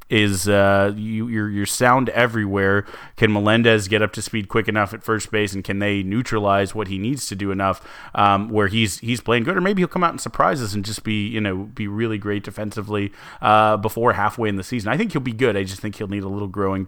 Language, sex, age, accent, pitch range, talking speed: English, male, 30-49, American, 100-115 Hz, 240 wpm